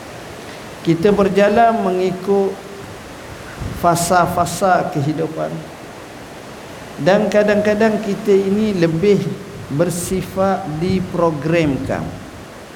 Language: Malay